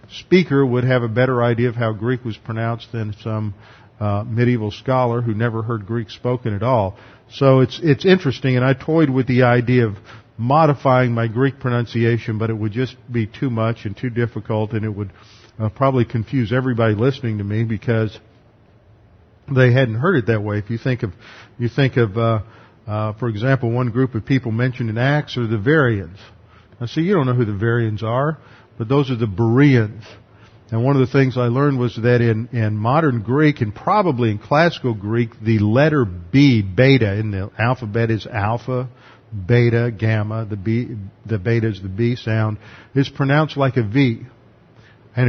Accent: American